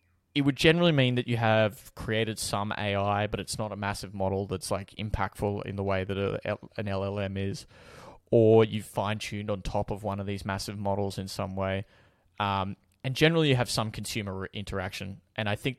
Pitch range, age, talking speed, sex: 95-110 Hz, 20-39, 195 wpm, male